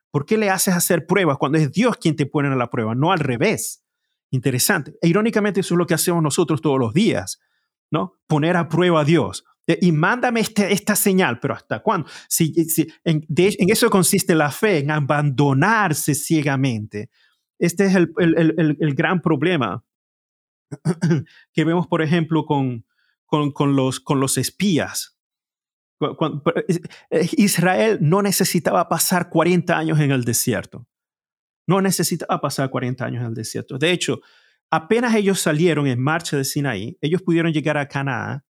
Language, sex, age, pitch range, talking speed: Spanish, male, 30-49, 145-180 Hz, 165 wpm